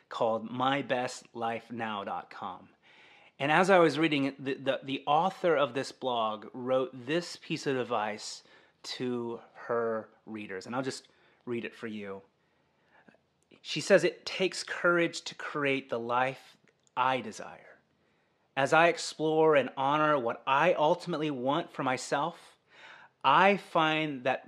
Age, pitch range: 30-49, 125-170 Hz